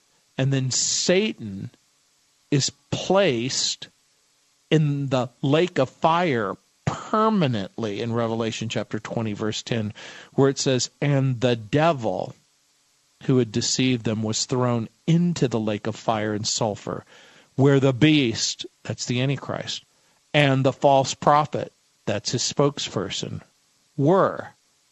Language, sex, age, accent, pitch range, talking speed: English, male, 50-69, American, 120-145 Hz, 120 wpm